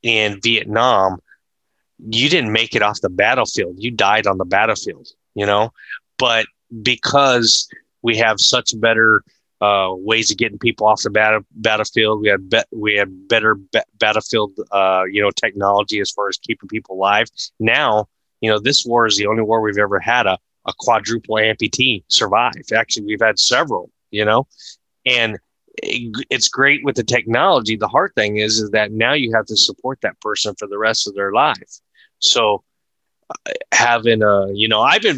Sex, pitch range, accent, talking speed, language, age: male, 100-110 Hz, American, 175 wpm, English, 20-39